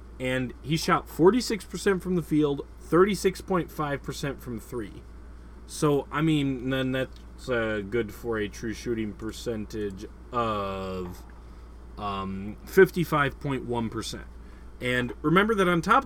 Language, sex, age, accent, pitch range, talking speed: English, male, 30-49, American, 105-160 Hz, 110 wpm